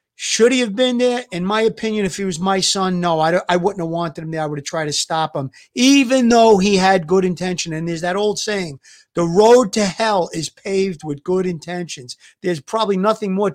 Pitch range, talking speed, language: 175-220 Hz, 230 wpm, English